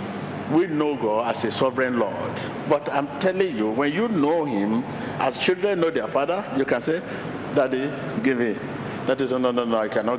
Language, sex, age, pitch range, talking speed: English, male, 60-79, 135-190 Hz, 195 wpm